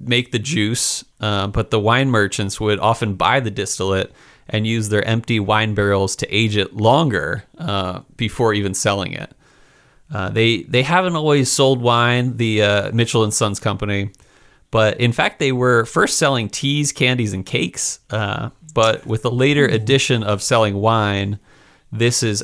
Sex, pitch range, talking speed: male, 105-125 Hz, 170 wpm